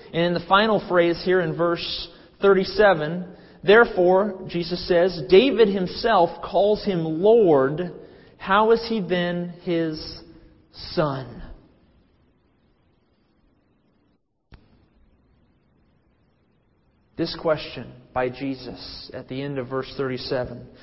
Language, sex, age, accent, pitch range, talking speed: English, male, 40-59, American, 135-180 Hz, 95 wpm